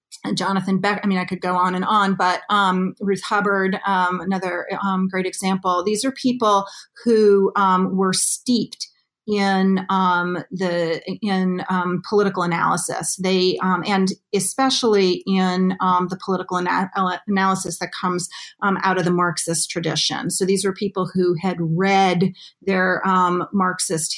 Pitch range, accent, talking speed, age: 180-200 Hz, American, 150 wpm, 40-59